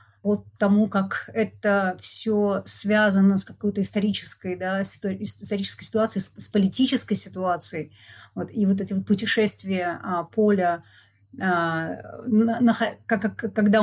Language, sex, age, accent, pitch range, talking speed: Russian, female, 30-49, native, 185-215 Hz, 120 wpm